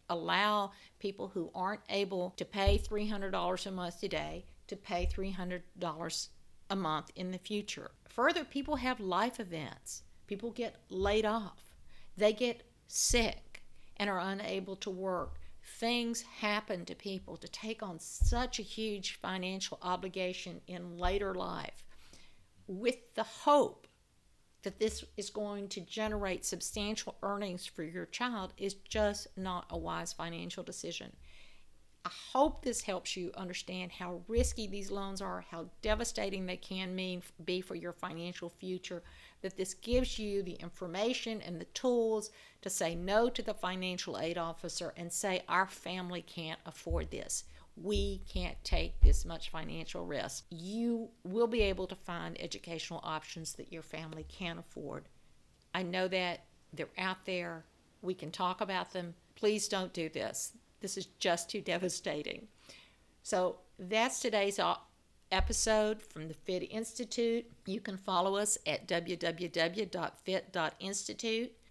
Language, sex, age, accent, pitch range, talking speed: English, female, 50-69, American, 175-210 Hz, 145 wpm